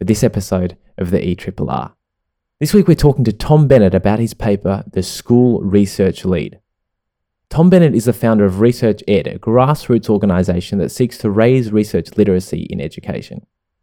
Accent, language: Australian, English